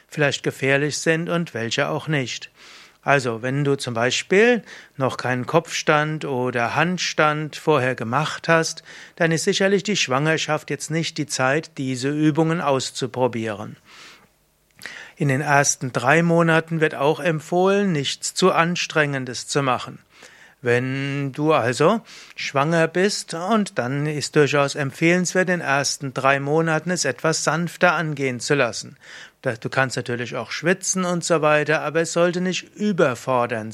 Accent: German